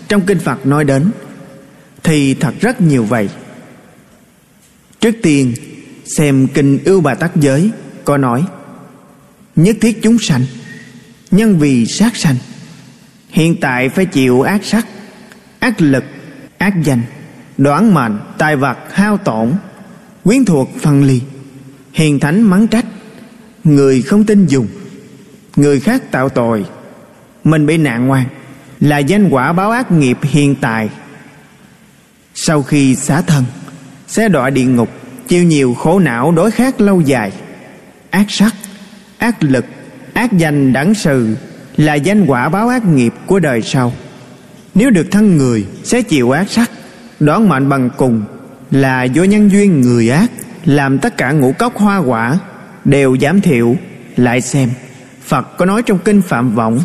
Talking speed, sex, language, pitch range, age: 150 wpm, male, Vietnamese, 135-205 Hz, 20-39